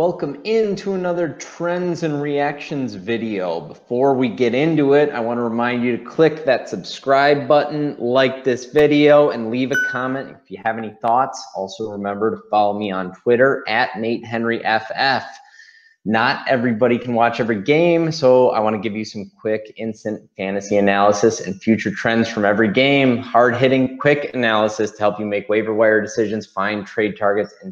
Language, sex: English, male